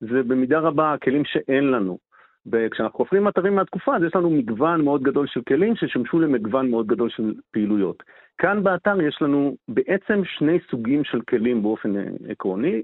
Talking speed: 165 wpm